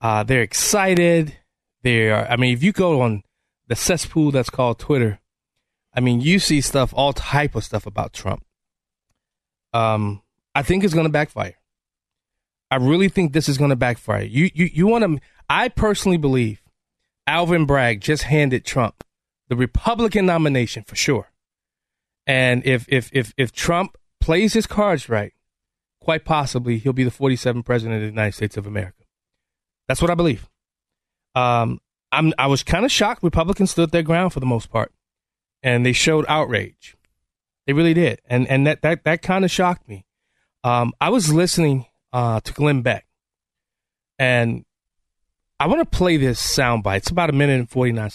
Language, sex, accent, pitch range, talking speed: English, male, American, 115-165 Hz, 165 wpm